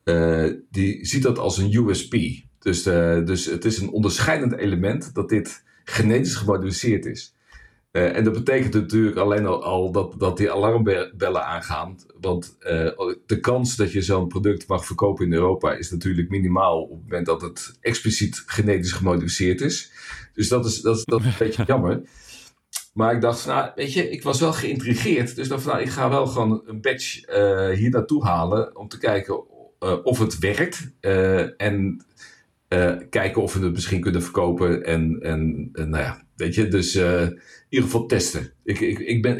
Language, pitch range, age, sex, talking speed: Dutch, 90-110 Hz, 50-69, male, 175 wpm